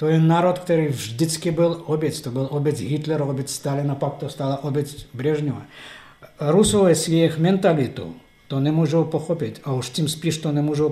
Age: 50-69